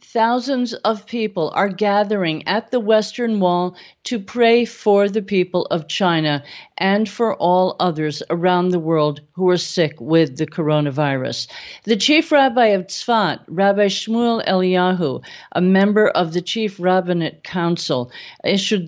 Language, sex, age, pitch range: English, female, 50-69, 160-200 Hz